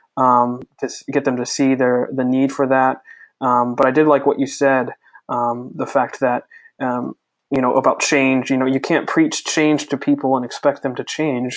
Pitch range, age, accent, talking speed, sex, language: 125-140 Hz, 20-39, American, 220 wpm, male, English